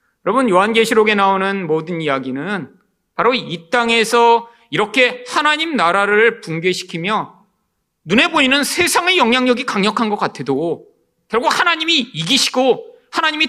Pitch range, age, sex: 185-270 Hz, 40-59, male